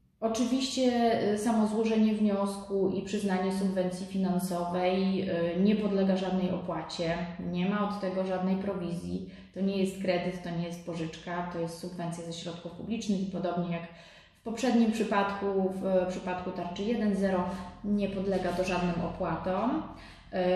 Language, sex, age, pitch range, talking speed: Polish, female, 30-49, 180-205 Hz, 135 wpm